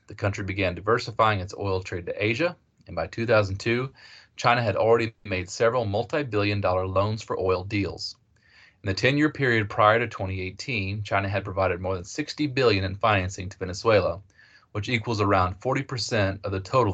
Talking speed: 170 wpm